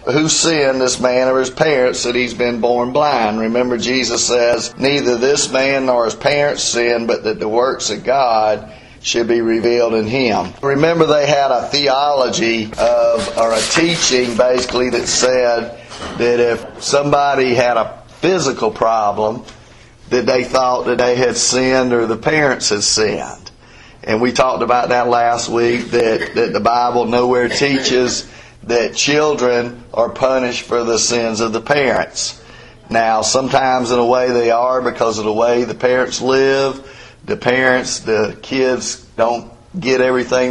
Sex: male